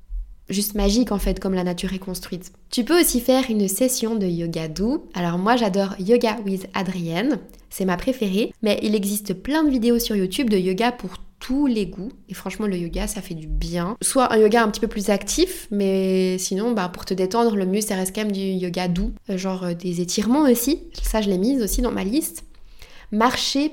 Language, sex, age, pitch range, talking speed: French, female, 20-39, 190-240 Hz, 220 wpm